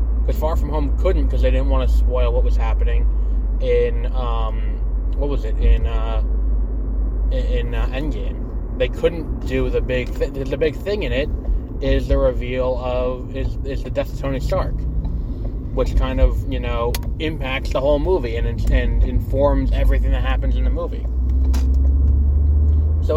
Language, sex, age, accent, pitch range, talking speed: English, male, 20-39, American, 65-90 Hz, 170 wpm